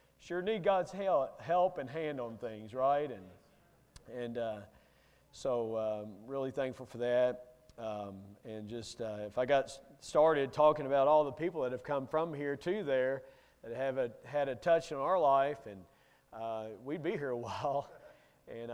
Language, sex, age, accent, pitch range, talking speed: English, male, 40-59, American, 115-145 Hz, 175 wpm